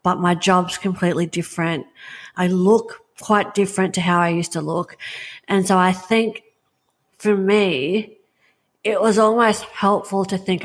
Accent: Australian